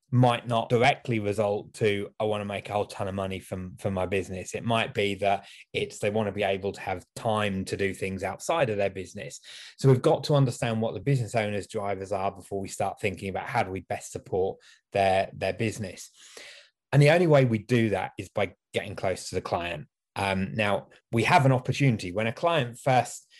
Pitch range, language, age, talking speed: 100-115 Hz, English, 20-39, 220 wpm